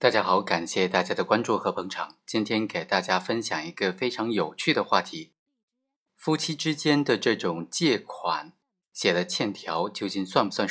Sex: male